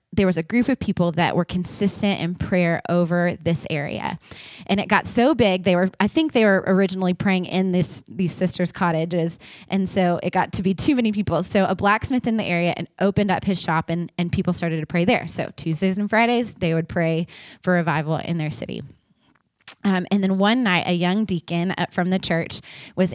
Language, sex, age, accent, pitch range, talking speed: English, female, 20-39, American, 170-195 Hz, 220 wpm